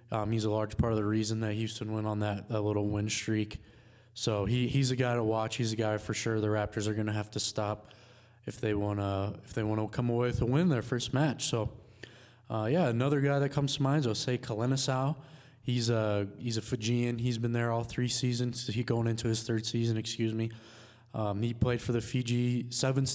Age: 20-39